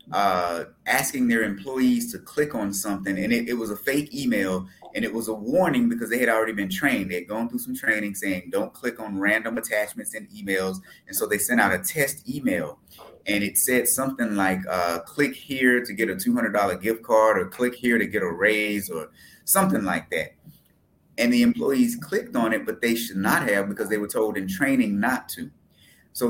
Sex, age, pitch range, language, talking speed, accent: male, 30-49, 100-140 Hz, English, 210 wpm, American